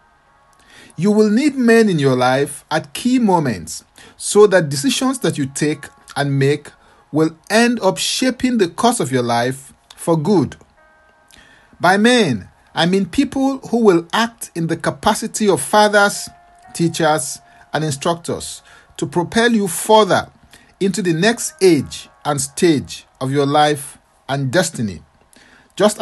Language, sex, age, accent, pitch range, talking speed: English, male, 50-69, Nigerian, 140-220 Hz, 140 wpm